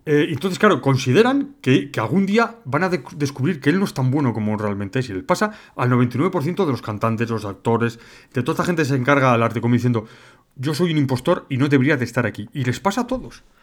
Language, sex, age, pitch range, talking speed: Spanish, male, 30-49, 125-185 Hz, 245 wpm